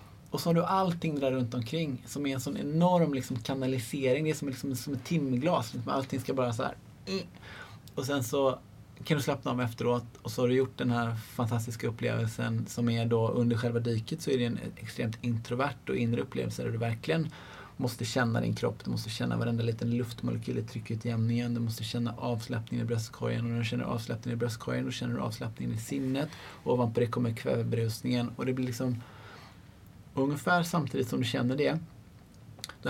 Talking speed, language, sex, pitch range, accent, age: 200 wpm, English, male, 115-130 Hz, Norwegian, 20-39